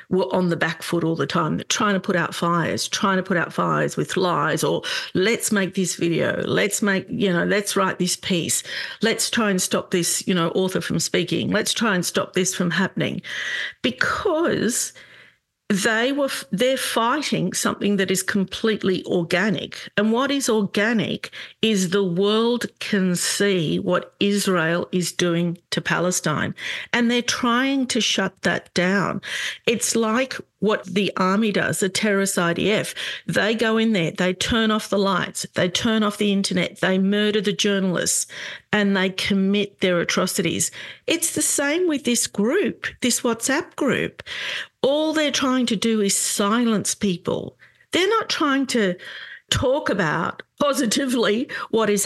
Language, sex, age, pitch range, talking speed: English, female, 50-69, 180-225 Hz, 160 wpm